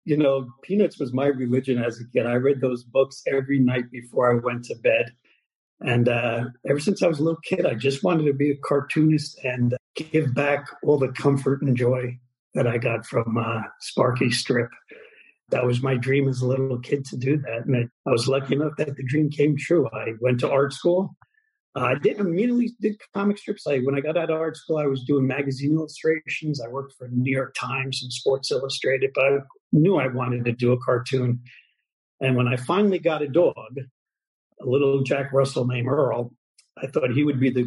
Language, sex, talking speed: English, male, 215 wpm